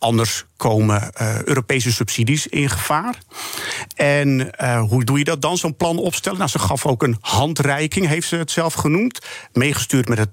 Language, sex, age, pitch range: Dutch, male, 50-69, 130-170 Hz